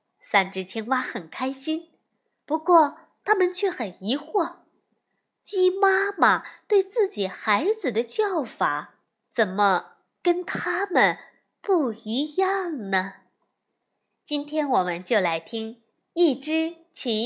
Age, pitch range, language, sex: 20-39, 205-325 Hz, Chinese, female